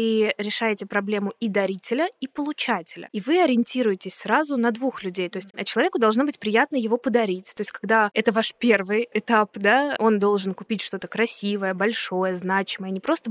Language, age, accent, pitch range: Russian, 20-39, native, 195-230 Hz